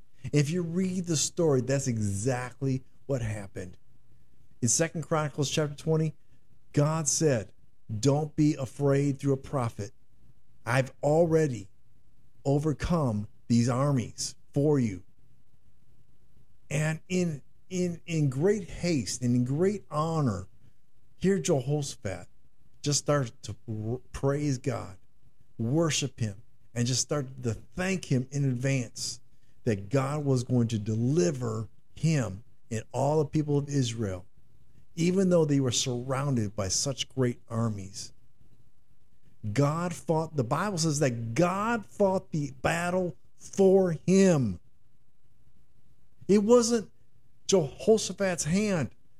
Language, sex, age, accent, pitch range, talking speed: English, male, 50-69, American, 125-170 Hz, 115 wpm